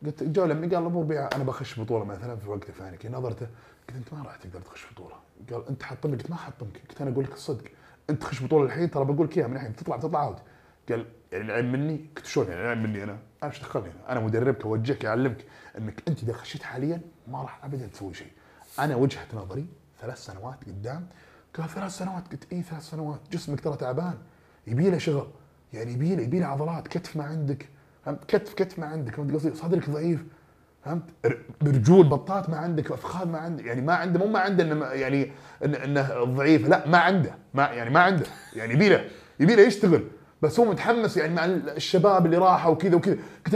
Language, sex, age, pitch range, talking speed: Arabic, male, 30-49, 130-170 Hz, 205 wpm